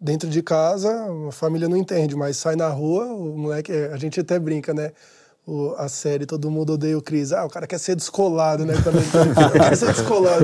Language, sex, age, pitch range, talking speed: Portuguese, male, 20-39, 155-180 Hz, 200 wpm